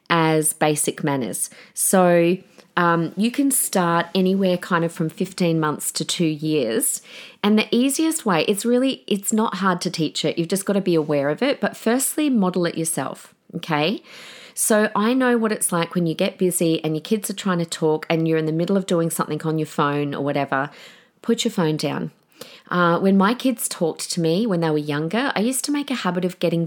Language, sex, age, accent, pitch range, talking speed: English, female, 40-59, Australian, 155-205 Hz, 215 wpm